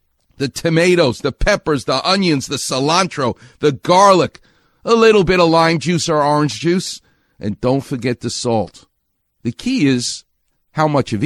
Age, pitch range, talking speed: 50-69, 110-170 Hz, 160 wpm